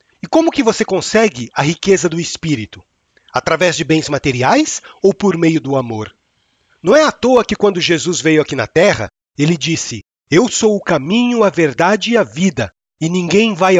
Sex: male